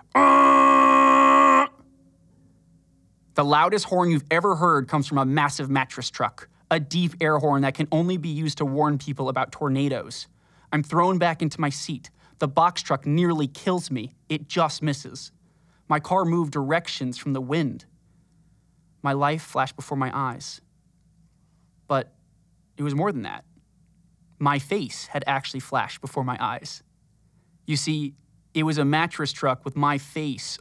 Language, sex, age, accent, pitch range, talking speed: English, male, 20-39, American, 140-165 Hz, 155 wpm